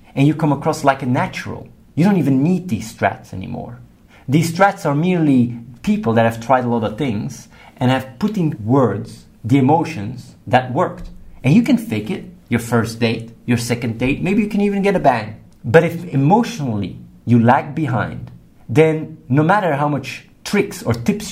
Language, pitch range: English, 110-145 Hz